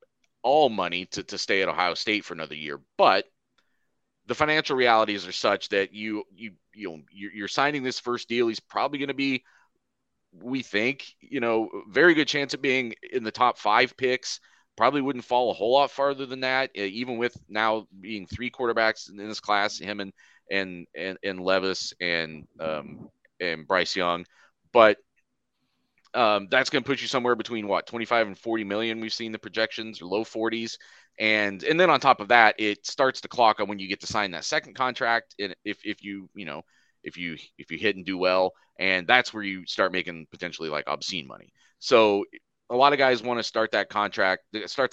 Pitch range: 95-120 Hz